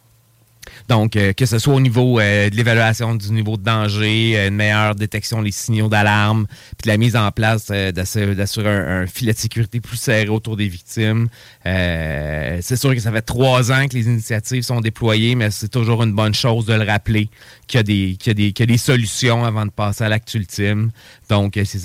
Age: 30-49